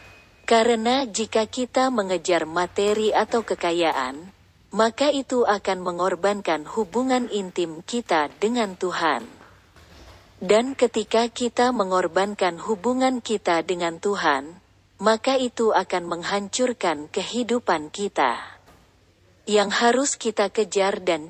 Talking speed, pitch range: 100 wpm, 175-230 Hz